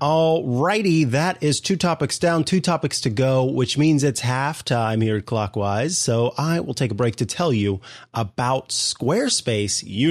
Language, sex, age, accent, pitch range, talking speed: English, male, 30-49, American, 115-150 Hz, 180 wpm